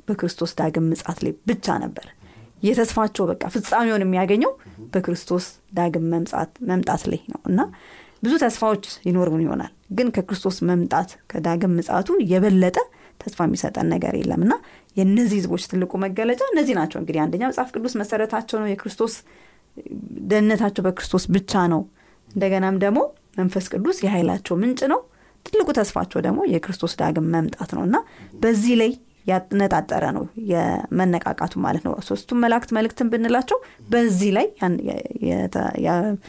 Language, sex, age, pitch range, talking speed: Amharic, female, 30-49, 175-220 Hz, 105 wpm